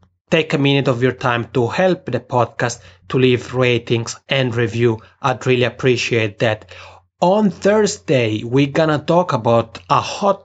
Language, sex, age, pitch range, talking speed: English, male, 30-49, 120-140 Hz, 160 wpm